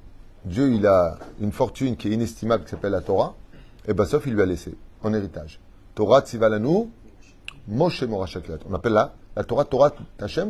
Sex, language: male, French